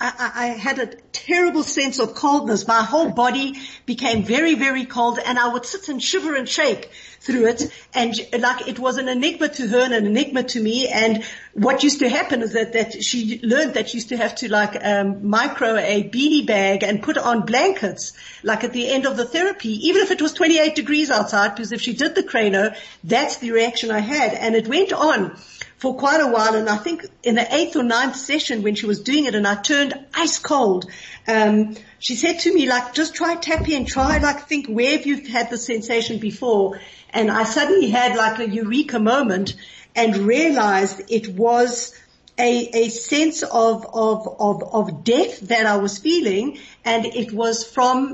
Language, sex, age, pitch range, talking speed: English, female, 50-69, 220-280 Hz, 205 wpm